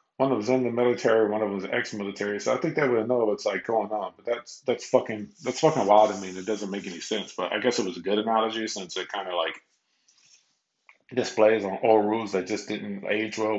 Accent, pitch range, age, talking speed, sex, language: American, 100-110 Hz, 20-39, 245 wpm, male, English